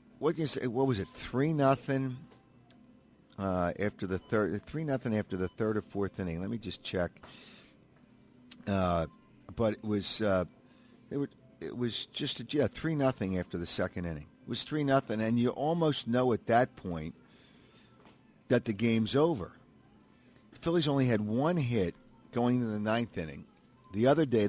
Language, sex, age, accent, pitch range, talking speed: English, male, 50-69, American, 100-130 Hz, 175 wpm